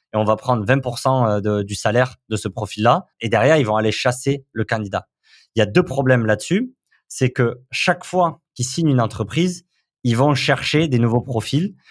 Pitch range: 110-135 Hz